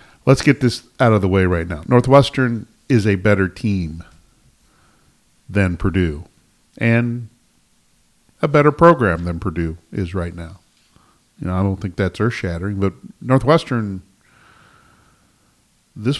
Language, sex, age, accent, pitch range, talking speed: English, male, 50-69, American, 95-125 Hz, 130 wpm